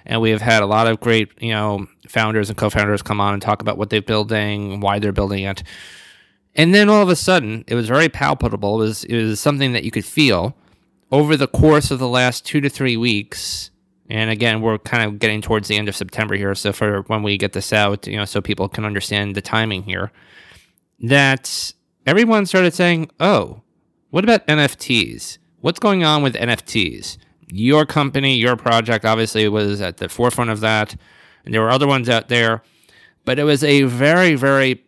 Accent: American